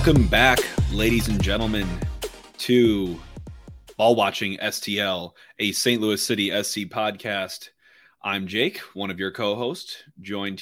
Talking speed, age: 125 wpm, 20-39